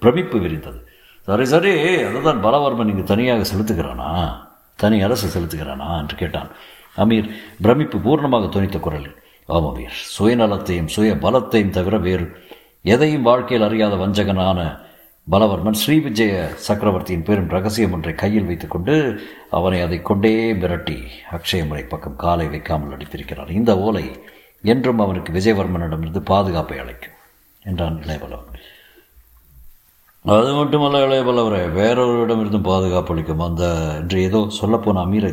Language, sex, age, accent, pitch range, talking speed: Tamil, male, 60-79, native, 80-110 Hz, 110 wpm